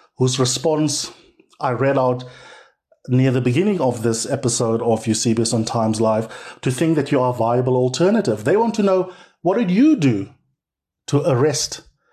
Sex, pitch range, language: male, 120-150 Hz, English